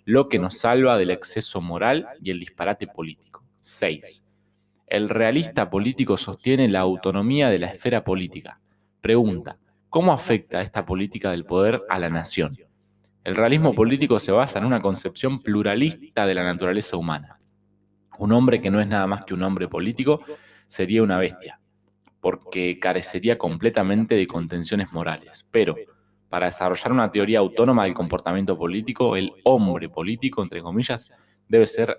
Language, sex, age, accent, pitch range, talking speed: Spanish, male, 20-39, Argentinian, 90-110 Hz, 150 wpm